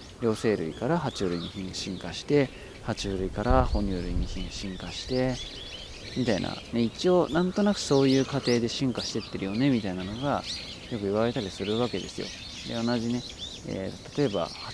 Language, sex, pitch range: Japanese, male, 95-125 Hz